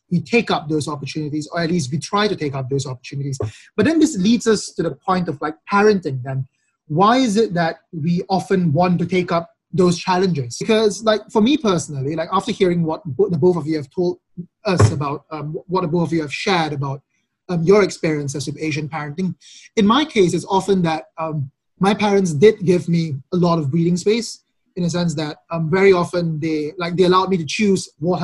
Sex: male